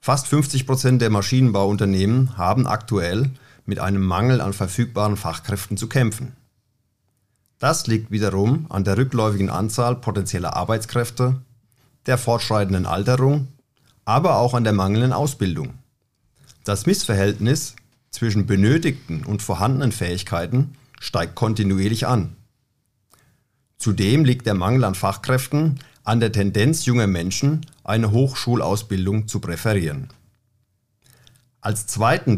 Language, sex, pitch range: German, male, 100-130 Hz